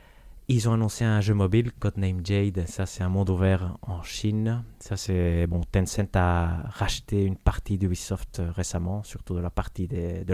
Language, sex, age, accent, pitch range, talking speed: French, male, 30-49, French, 95-115 Hz, 180 wpm